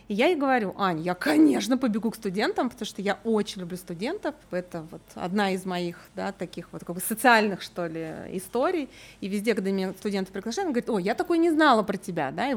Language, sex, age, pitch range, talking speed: Russian, female, 20-39, 195-255 Hz, 225 wpm